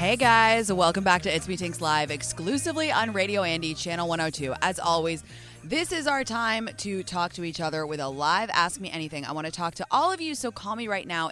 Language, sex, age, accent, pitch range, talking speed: English, female, 20-39, American, 140-200 Hz, 240 wpm